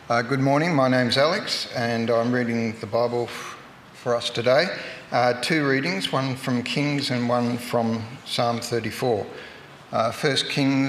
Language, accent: English, Australian